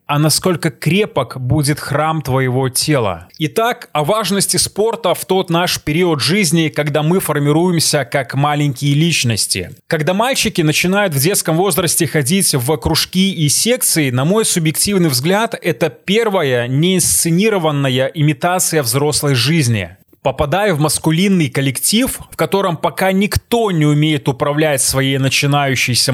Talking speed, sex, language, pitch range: 130 wpm, male, Russian, 140-180 Hz